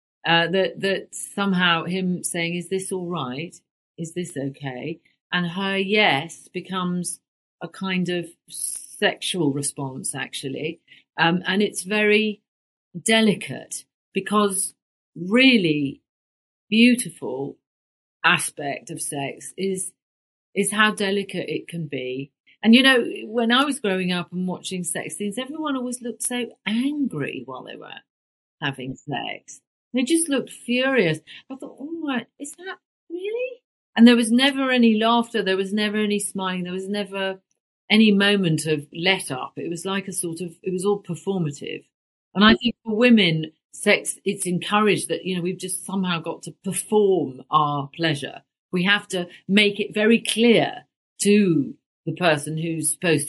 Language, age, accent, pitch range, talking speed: English, 40-59, British, 165-220 Hz, 150 wpm